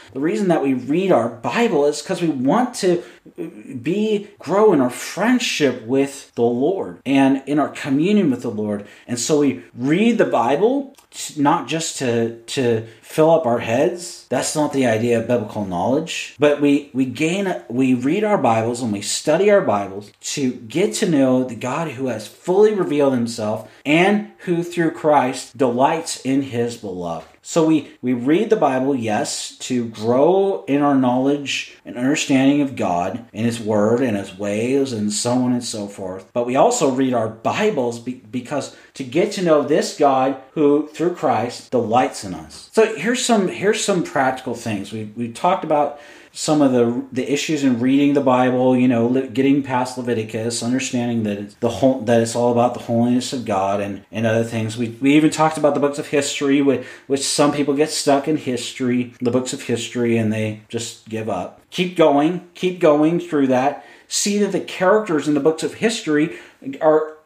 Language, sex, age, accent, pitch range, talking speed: English, male, 40-59, American, 120-155 Hz, 185 wpm